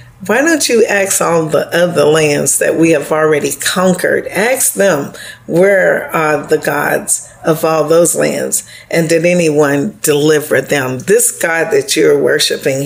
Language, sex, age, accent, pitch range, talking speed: English, female, 50-69, American, 150-195 Hz, 155 wpm